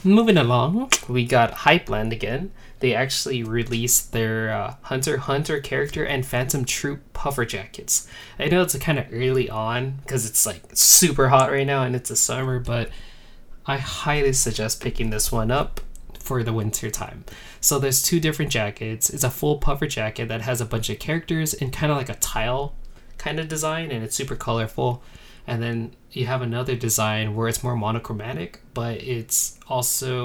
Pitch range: 115-140 Hz